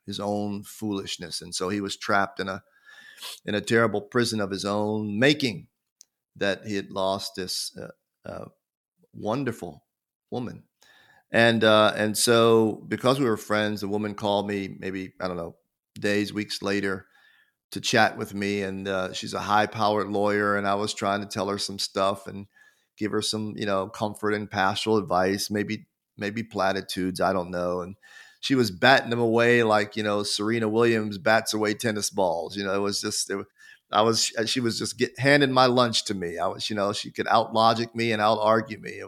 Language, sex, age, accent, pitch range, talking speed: English, male, 40-59, American, 100-115 Hz, 195 wpm